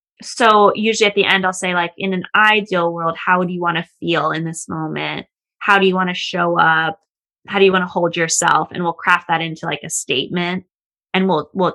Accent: American